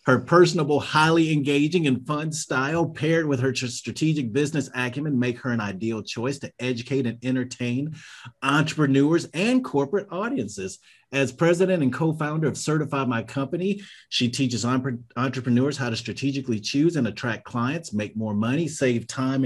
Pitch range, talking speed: 120-155 Hz, 150 wpm